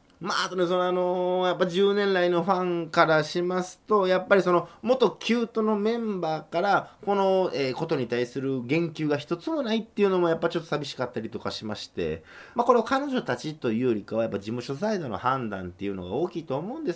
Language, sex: Japanese, male